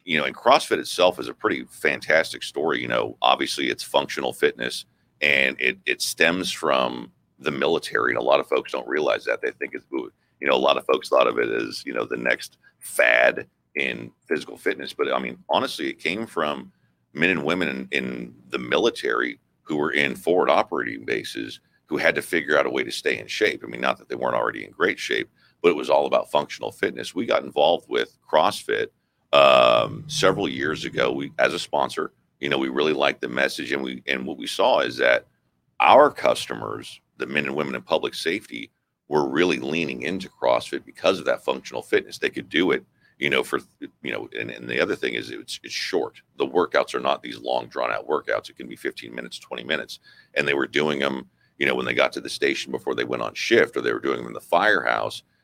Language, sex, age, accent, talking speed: English, male, 40-59, American, 225 wpm